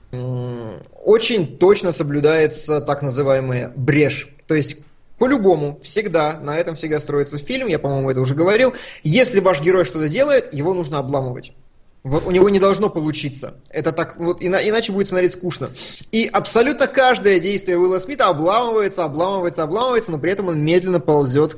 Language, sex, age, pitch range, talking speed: Russian, male, 20-39, 140-180 Hz, 165 wpm